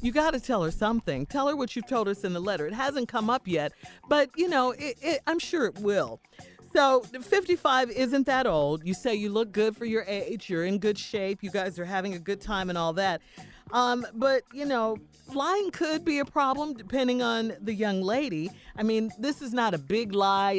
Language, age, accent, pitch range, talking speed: English, 40-59, American, 180-260 Hz, 220 wpm